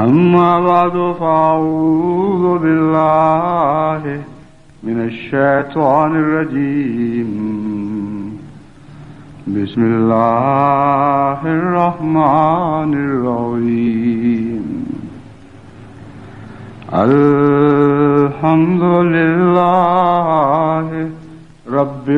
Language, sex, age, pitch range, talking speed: English, male, 60-79, 120-160 Hz, 40 wpm